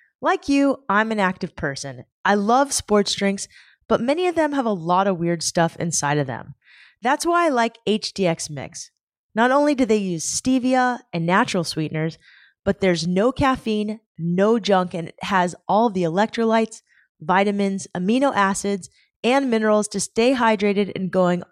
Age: 20-39